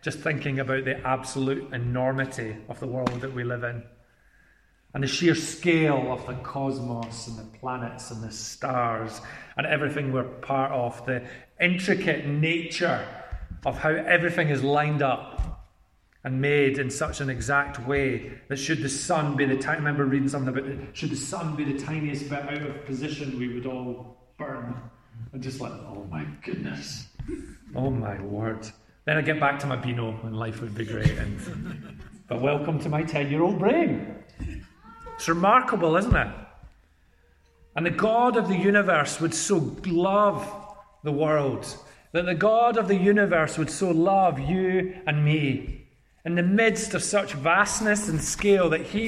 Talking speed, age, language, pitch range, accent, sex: 170 wpm, 30-49, English, 125-170 Hz, British, male